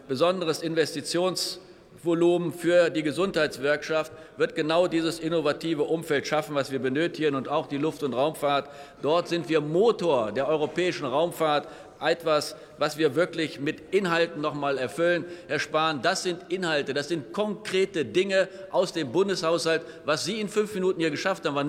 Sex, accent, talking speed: male, German, 155 wpm